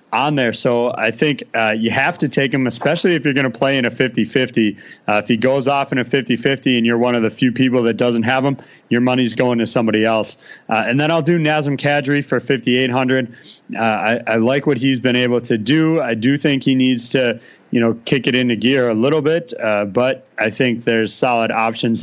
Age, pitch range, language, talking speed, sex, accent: 30-49, 115-140 Hz, English, 240 wpm, male, American